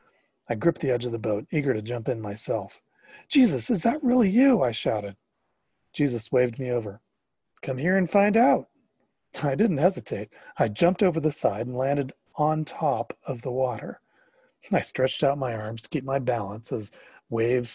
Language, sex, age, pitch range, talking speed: English, male, 40-59, 115-185 Hz, 185 wpm